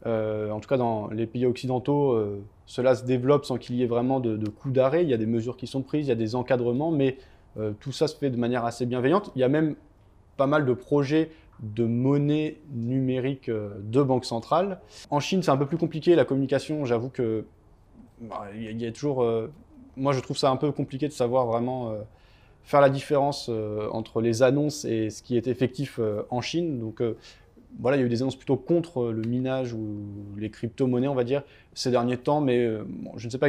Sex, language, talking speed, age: male, French, 240 wpm, 20-39